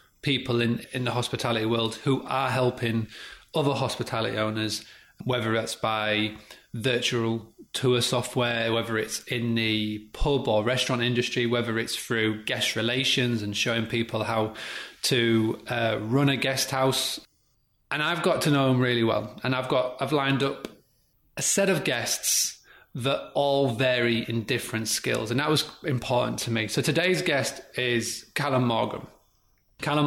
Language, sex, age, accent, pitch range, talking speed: English, male, 30-49, British, 115-135 Hz, 155 wpm